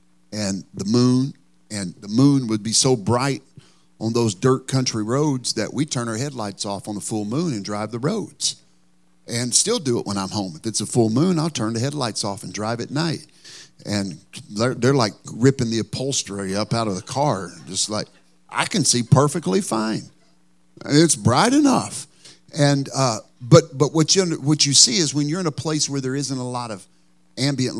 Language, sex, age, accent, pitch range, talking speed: English, male, 50-69, American, 110-145 Hz, 205 wpm